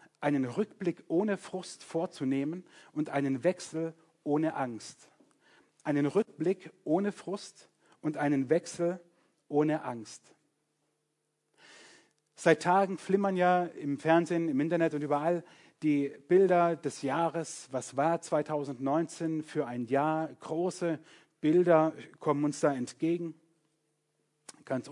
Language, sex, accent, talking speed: German, male, German, 110 wpm